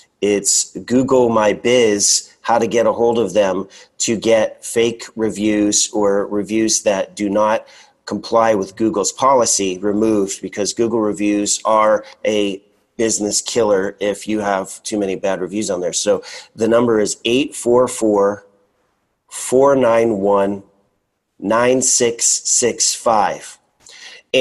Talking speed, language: 115 wpm, English